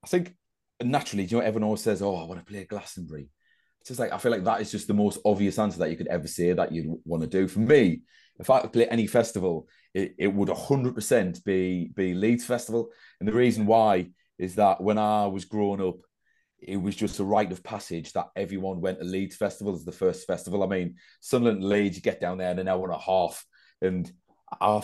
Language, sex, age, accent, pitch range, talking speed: English, male, 30-49, British, 95-110 Hz, 240 wpm